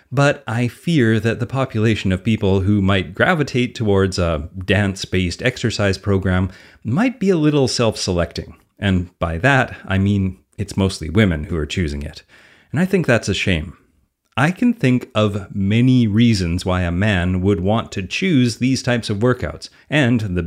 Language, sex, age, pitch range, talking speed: English, male, 30-49, 95-130 Hz, 170 wpm